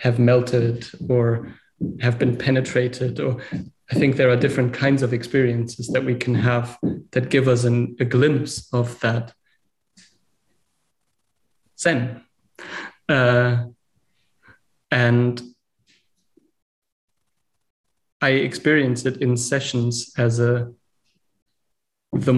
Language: English